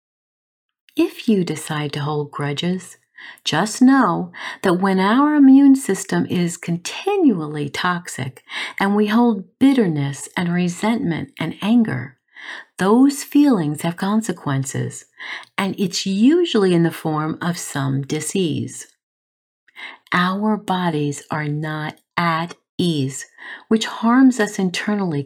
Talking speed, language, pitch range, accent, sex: 110 wpm, English, 150-215 Hz, American, female